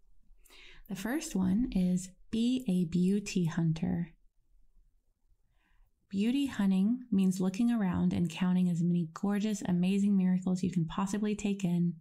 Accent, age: American, 20-39